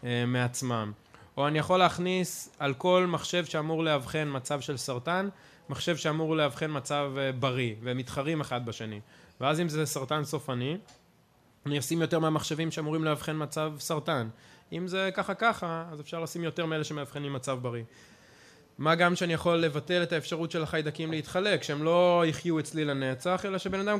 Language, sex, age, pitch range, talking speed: Hebrew, male, 20-39, 135-170 Hz, 165 wpm